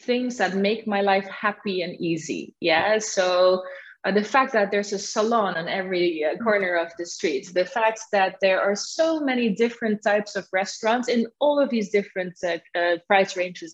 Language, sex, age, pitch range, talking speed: Arabic, female, 20-39, 185-250 Hz, 190 wpm